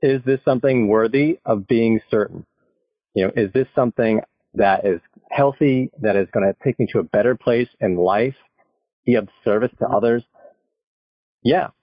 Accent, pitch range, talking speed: American, 115-150 Hz, 165 wpm